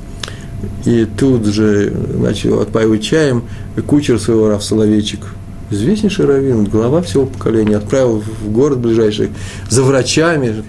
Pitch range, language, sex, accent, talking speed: 105-135 Hz, Russian, male, native, 120 wpm